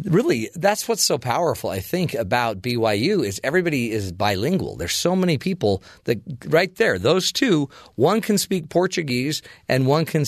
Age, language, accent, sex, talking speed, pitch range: 40-59, English, American, male, 170 wpm, 105-150 Hz